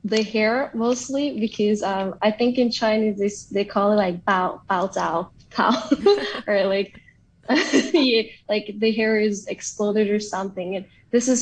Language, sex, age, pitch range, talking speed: English, female, 10-29, 190-225 Hz, 165 wpm